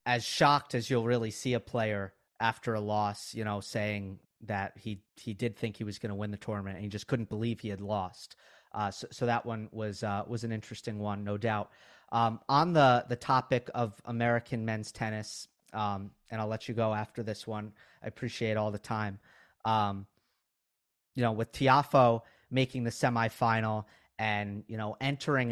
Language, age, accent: English, 30-49, American